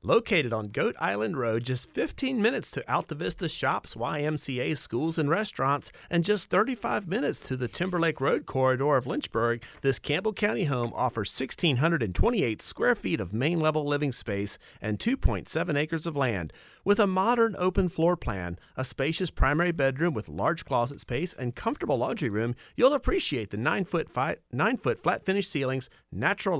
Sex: male